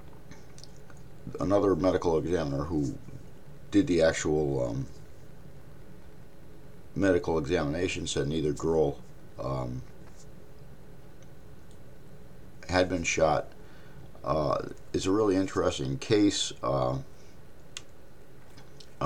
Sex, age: male, 50-69